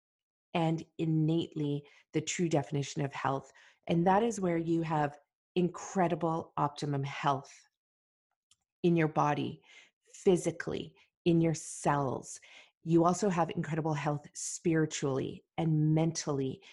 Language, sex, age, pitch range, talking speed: English, female, 40-59, 150-180 Hz, 110 wpm